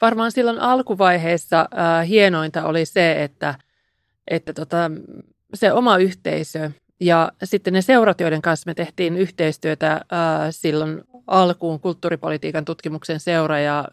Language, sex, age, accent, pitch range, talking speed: Finnish, male, 30-49, native, 155-185 Hz, 120 wpm